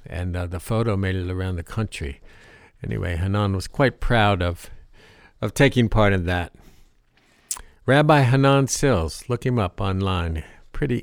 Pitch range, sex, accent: 95-115 Hz, male, American